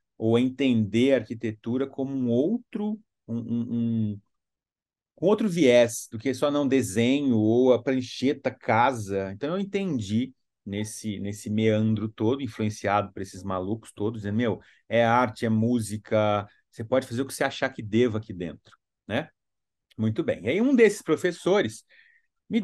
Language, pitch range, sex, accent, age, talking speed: Portuguese, 110-160 Hz, male, Brazilian, 30-49, 160 wpm